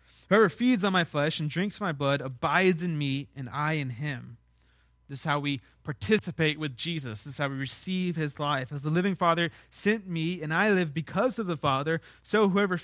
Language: English